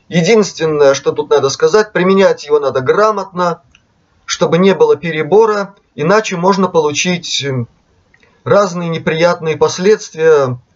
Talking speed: 105 wpm